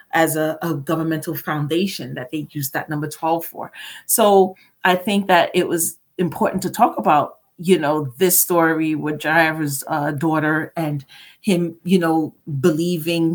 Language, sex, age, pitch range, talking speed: English, female, 40-59, 150-175 Hz, 155 wpm